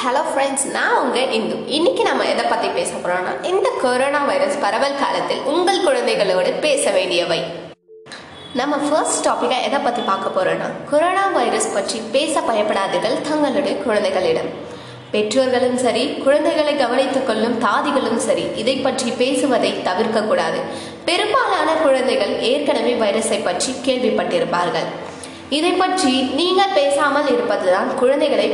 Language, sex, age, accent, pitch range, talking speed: Tamil, female, 20-39, native, 235-295 Hz, 60 wpm